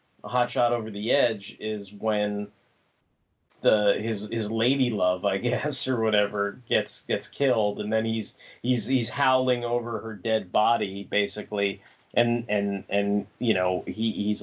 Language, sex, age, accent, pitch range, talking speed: English, male, 30-49, American, 105-120 Hz, 150 wpm